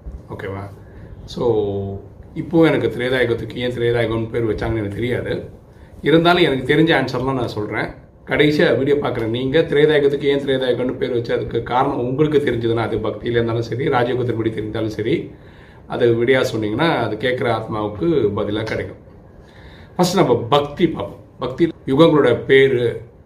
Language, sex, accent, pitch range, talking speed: Tamil, male, native, 105-140 Hz, 130 wpm